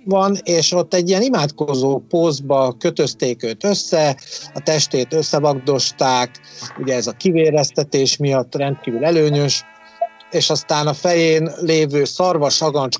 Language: Hungarian